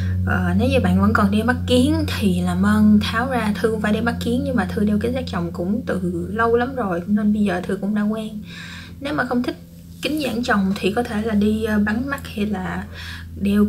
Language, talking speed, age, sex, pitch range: Vietnamese, 245 wpm, 20-39, female, 180-225 Hz